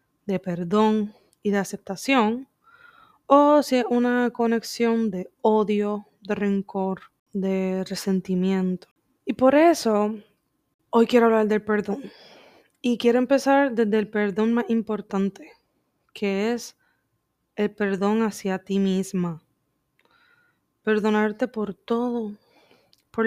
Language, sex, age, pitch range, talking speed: Spanish, female, 20-39, 205-235 Hz, 110 wpm